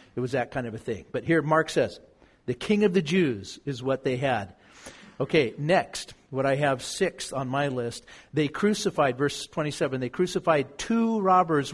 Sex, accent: male, American